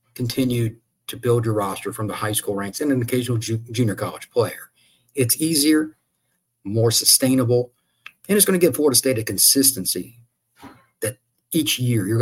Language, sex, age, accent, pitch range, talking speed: English, male, 40-59, American, 105-130 Hz, 160 wpm